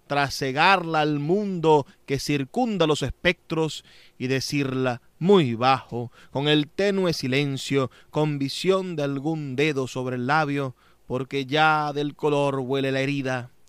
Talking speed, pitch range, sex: 130 wpm, 125-180 Hz, male